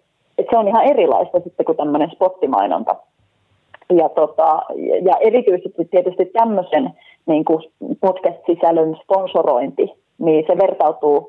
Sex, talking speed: female, 105 wpm